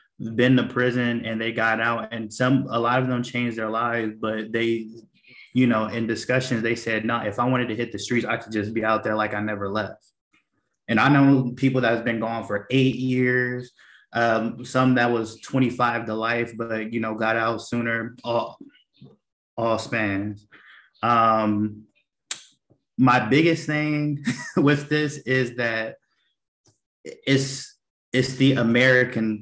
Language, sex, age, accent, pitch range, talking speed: English, male, 20-39, American, 115-130 Hz, 165 wpm